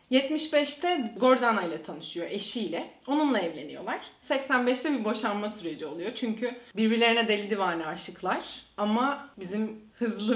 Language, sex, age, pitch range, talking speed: Turkish, female, 30-49, 185-250 Hz, 115 wpm